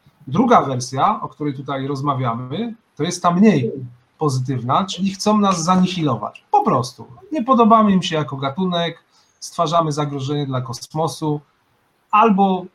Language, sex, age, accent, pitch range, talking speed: Polish, male, 30-49, native, 140-185 Hz, 130 wpm